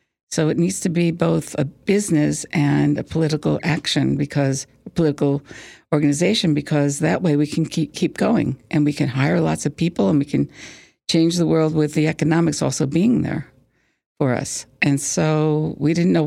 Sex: female